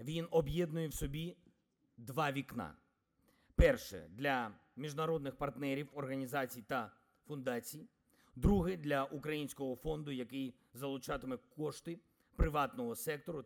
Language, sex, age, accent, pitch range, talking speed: Ukrainian, male, 50-69, native, 135-175 Hz, 105 wpm